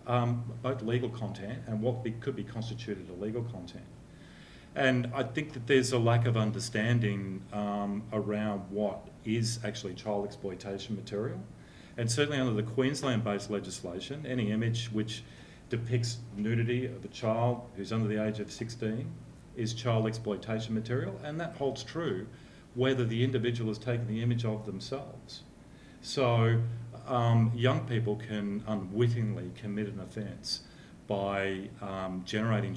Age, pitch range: 40-59, 105-120 Hz